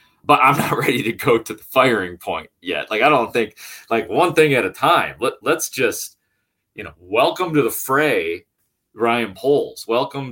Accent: American